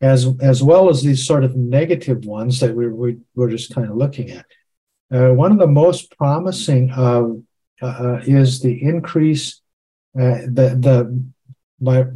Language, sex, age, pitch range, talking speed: English, male, 60-79, 125-145 Hz, 165 wpm